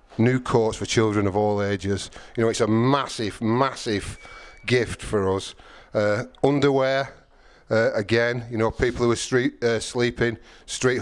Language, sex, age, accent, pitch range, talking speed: English, male, 40-59, British, 110-125 Hz, 160 wpm